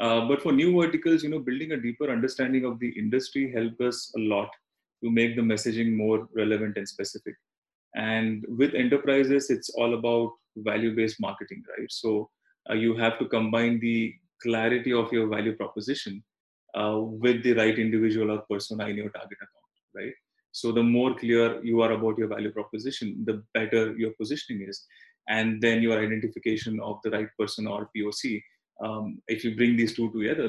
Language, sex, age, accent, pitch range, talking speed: English, male, 30-49, Indian, 110-125 Hz, 180 wpm